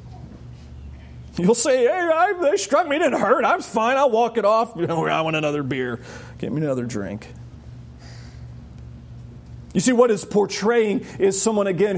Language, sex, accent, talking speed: English, male, American, 160 wpm